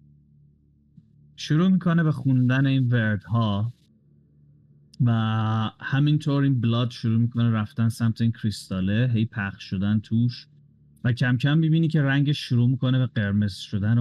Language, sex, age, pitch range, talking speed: Persian, male, 30-49, 110-145 Hz, 135 wpm